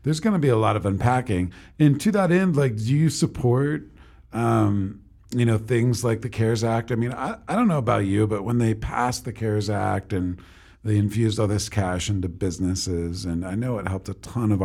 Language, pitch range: English, 95-130 Hz